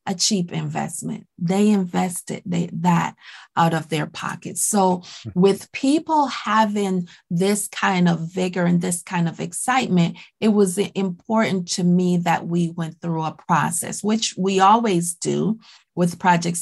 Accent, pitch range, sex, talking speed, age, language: American, 170-205 Hz, female, 150 wpm, 30-49, English